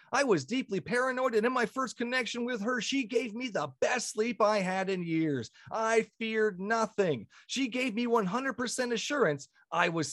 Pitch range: 175-255 Hz